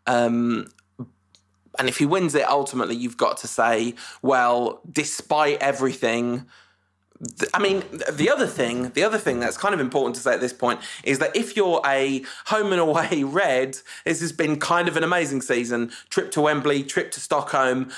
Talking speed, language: 185 wpm, English